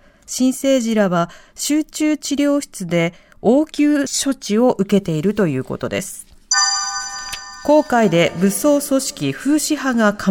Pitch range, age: 175-275 Hz, 40-59